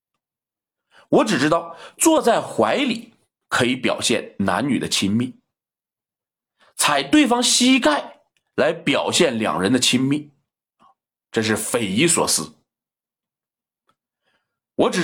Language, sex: Chinese, male